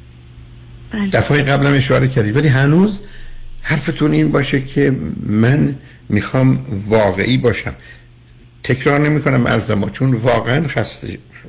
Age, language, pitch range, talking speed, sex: 60-79, Persian, 115-140 Hz, 115 wpm, male